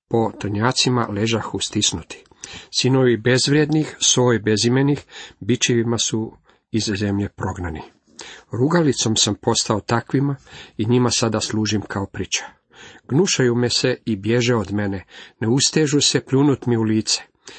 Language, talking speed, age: Croatian, 125 wpm, 50-69